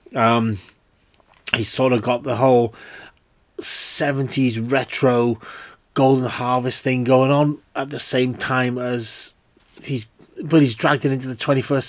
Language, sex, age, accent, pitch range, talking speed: English, male, 30-49, British, 115-140 Hz, 135 wpm